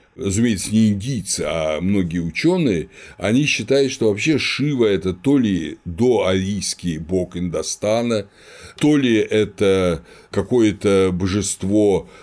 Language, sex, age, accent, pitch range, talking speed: Russian, male, 60-79, native, 95-130 Hz, 110 wpm